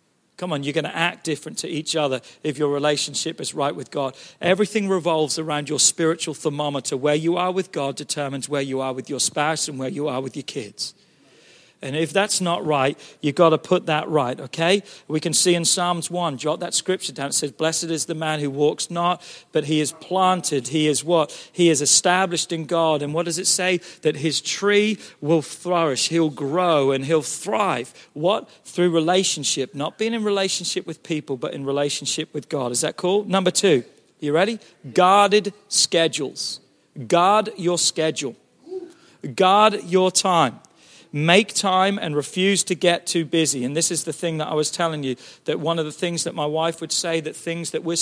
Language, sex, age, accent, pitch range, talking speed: English, male, 40-59, British, 150-180 Hz, 200 wpm